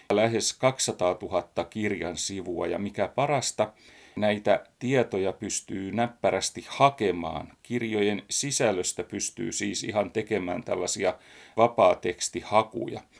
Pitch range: 100-125 Hz